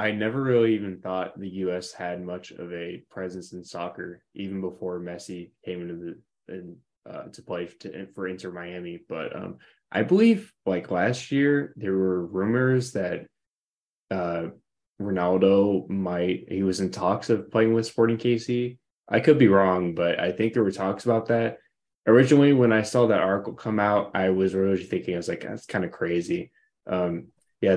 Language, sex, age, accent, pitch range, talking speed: English, male, 20-39, American, 90-110 Hz, 180 wpm